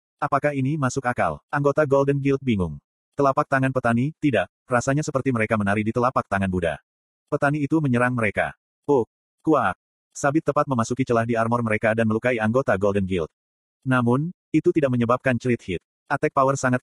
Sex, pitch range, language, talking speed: male, 110-140 Hz, Indonesian, 170 wpm